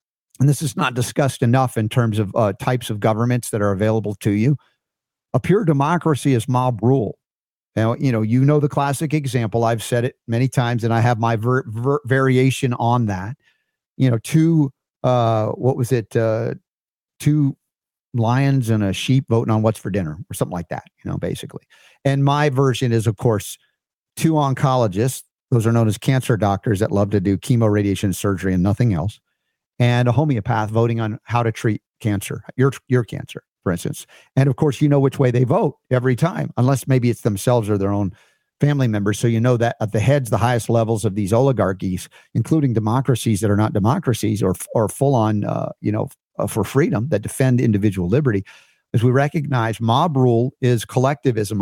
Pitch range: 110-135 Hz